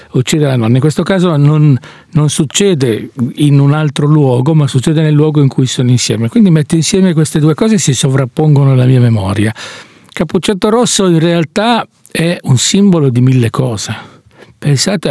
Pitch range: 135-170 Hz